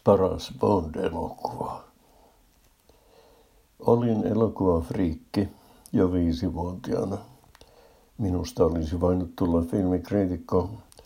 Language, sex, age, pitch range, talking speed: Finnish, male, 60-79, 85-100 Hz, 60 wpm